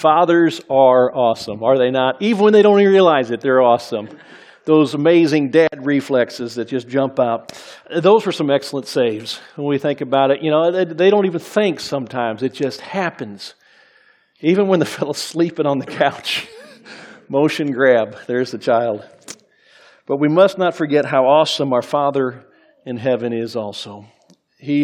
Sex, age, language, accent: male, 50-69, English, American